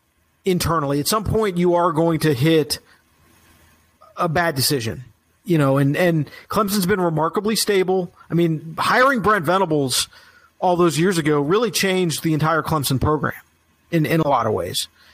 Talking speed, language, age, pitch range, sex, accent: 165 wpm, English, 40-59, 145-185 Hz, male, American